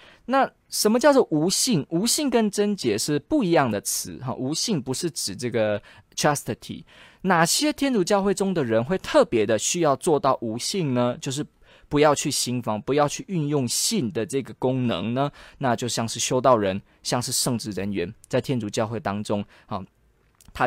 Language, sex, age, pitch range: Chinese, male, 20-39, 115-170 Hz